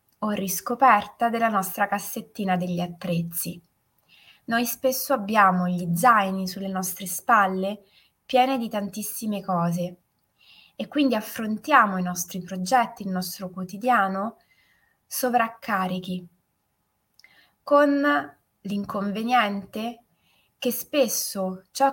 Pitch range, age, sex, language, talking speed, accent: 185-230 Hz, 20-39, female, Italian, 90 wpm, native